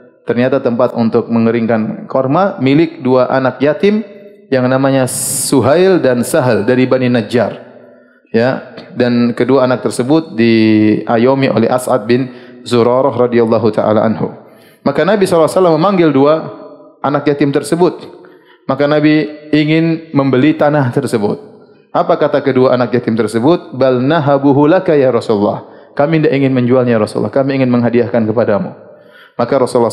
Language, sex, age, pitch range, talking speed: Indonesian, male, 30-49, 120-155 Hz, 130 wpm